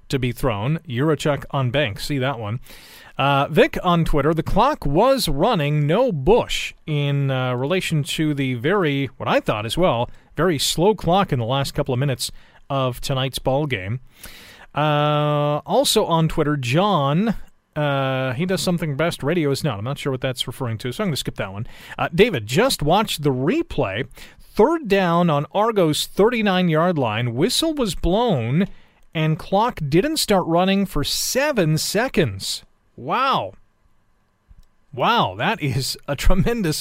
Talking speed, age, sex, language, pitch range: 160 wpm, 40-59, male, English, 135-185 Hz